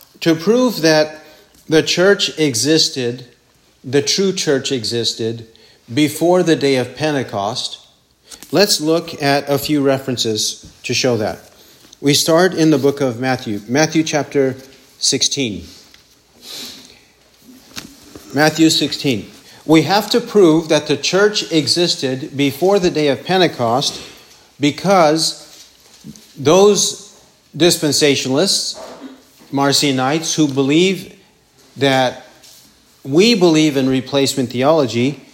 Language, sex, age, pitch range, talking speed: English, male, 50-69, 135-160 Hz, 105 wpm